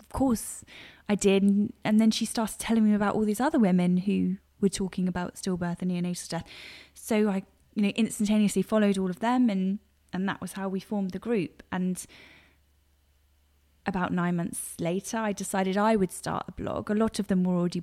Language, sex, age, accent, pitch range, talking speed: English, female, 10-29, British, 180-220 Hz, 195 wpm